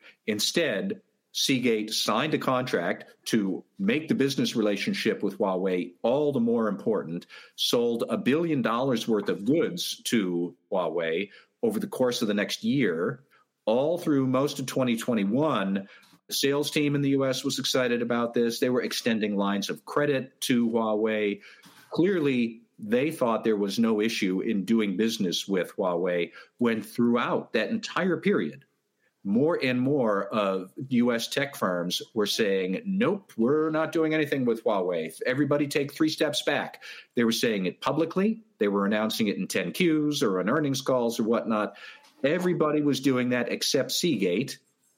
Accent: American